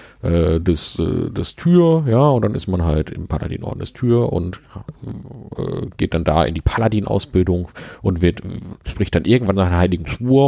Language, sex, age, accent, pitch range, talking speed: German, male, 40-59, German, 85-100 Hz, 165 wpm